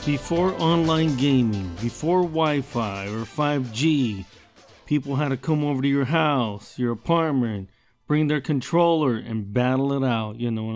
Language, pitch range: English, 120-145 Hz